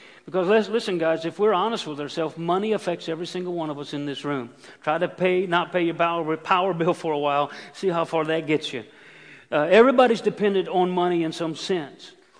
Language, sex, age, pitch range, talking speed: English, male, 50-69, 170-200 Hz, 220 wpm